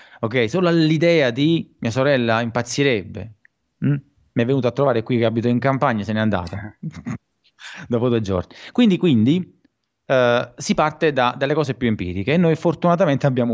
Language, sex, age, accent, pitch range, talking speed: Italian, male, 30-49, native, 120-160 Hz, 170 wpm